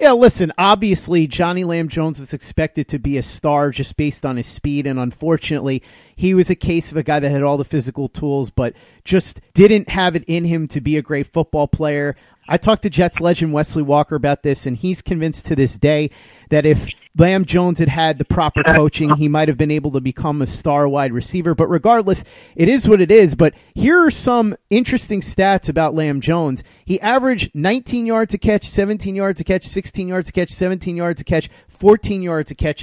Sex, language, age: male, English, 40-59